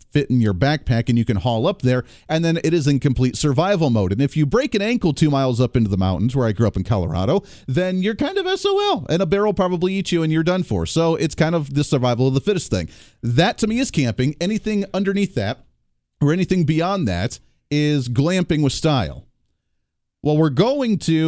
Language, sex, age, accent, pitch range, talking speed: English, male, 40-59, American, 115-170 Hz, 230 wpm